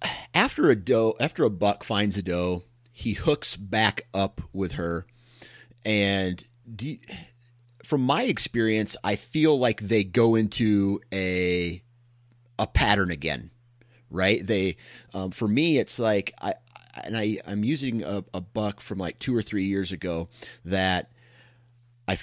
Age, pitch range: 30-49, 95-120 Hz